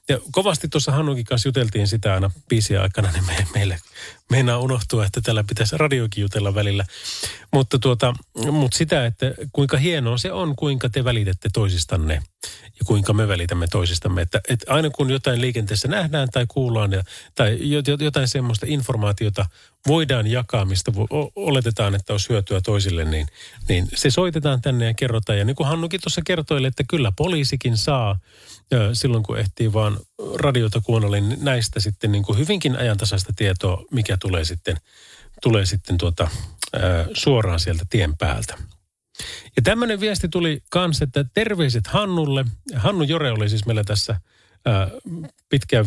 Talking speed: 150 wpm